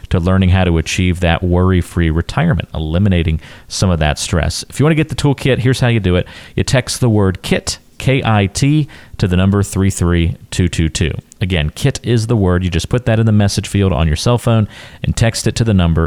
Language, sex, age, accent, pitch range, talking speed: English, male, 40-59, American, 85-115 Hz, 230 wpm